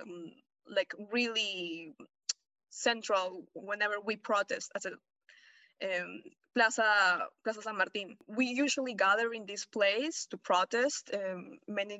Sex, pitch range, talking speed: female, 200-245 Hz, 115 wpm